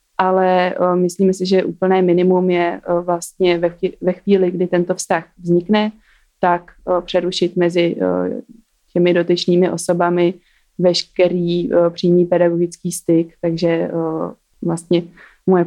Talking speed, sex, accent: 125 wpm, female, native